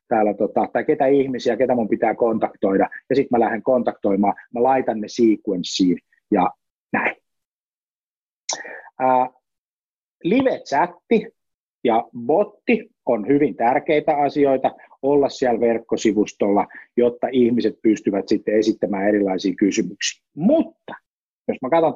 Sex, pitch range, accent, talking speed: male, 110-145 Hz, native, 110 wpm